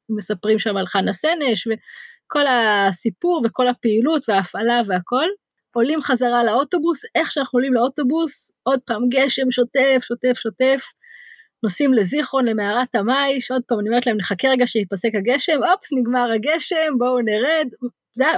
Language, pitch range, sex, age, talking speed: Hebrew, 220-285 Hz, female, 20-39, 140 wpm